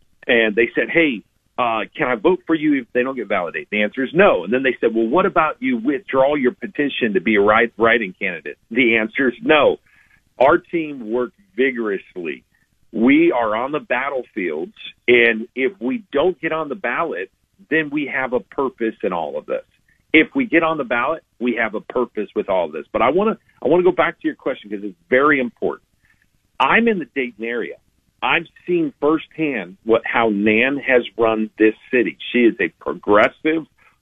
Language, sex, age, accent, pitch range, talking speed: English, male, 50-69, American, 115-155 Hz, 200 wpm